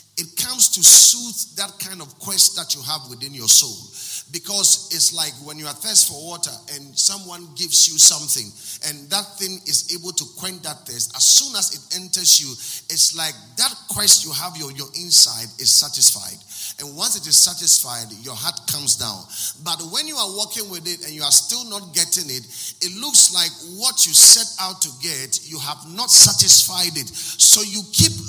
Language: English